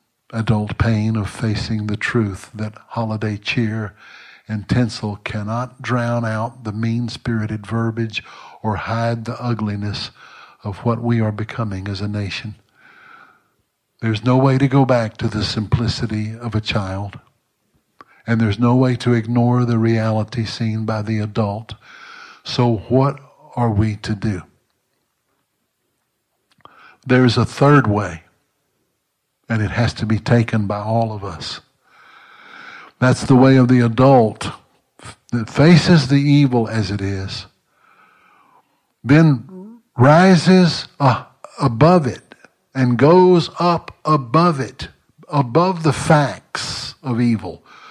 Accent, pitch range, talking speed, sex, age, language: American, 110-135 Hz, 125 wpm, male, 60-79, English